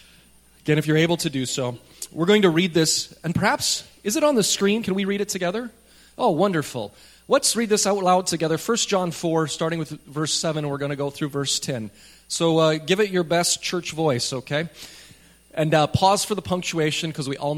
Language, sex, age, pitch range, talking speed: English, male, 30-49, 130-175 Hz, 220 wpm